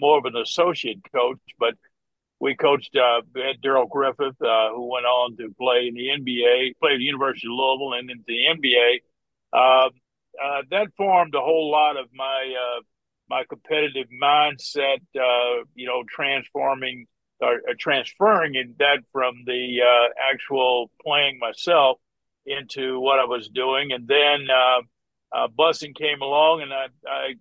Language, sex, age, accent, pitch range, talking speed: English, male, 50-69, American, 125-150 Hz, 160 wpm